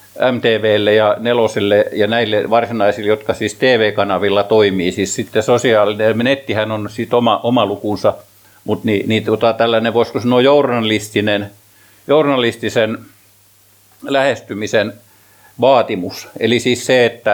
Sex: male